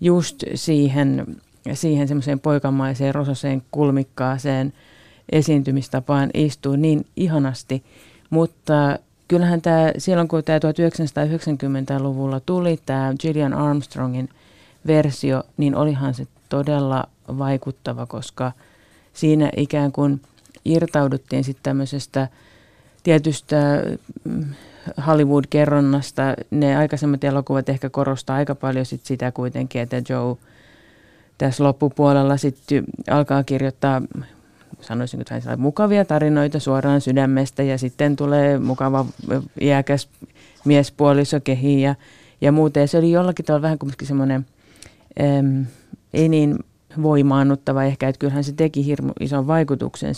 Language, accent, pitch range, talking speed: Finnish, native, 135-150 Hz, 105 wpm